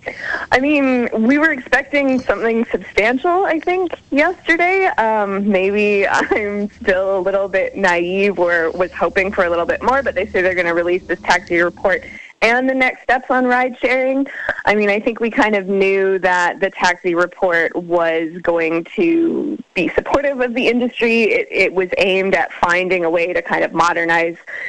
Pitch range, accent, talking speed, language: 180-260 Hz, American, 180 wpm, English